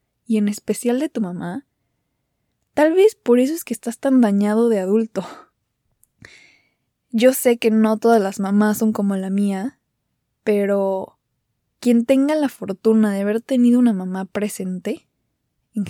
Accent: Mexican